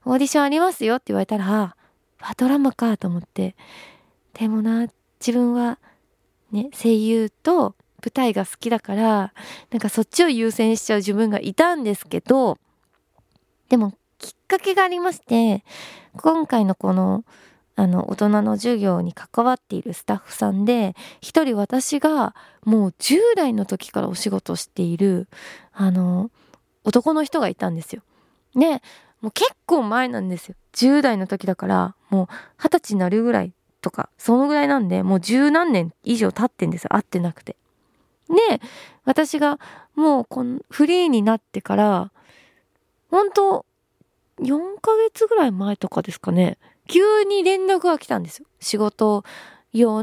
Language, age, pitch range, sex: Japanese, 20-39, 200-285 Hz, female